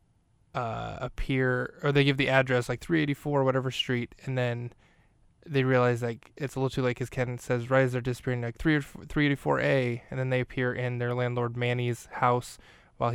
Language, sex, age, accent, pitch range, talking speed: English, male, 20-39, American, 120-130 Hz, 190 wpm